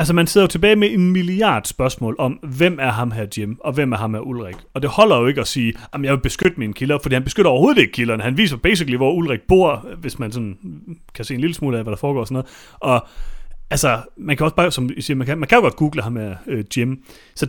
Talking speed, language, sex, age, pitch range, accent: 285 wpm, Danish, male, 30-49, 115-155 Hz, native